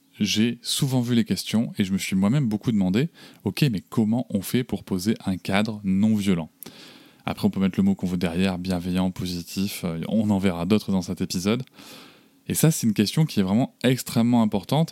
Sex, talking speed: male, 210 wpm